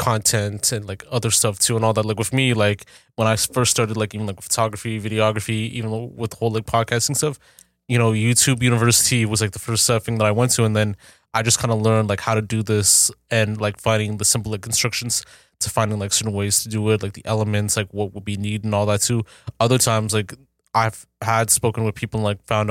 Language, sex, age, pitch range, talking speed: English, male, 20-39, 105-120 Hz, 245 wpm